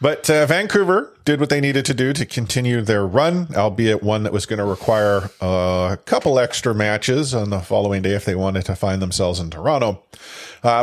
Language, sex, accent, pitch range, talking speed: English, male, American, 105-145 Hz, 205 wpm